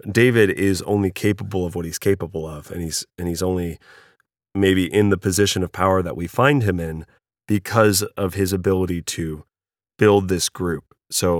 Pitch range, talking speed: 85-105 Hz, 180 wpm